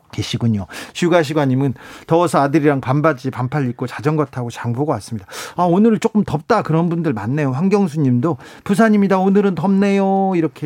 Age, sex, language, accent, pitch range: 40-59, male, Korean, native, 130-185 Hz